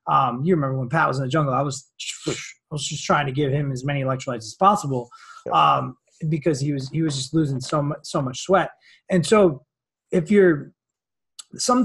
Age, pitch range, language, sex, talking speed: 20-39, 140-175 Hz, English, male, 210 wpm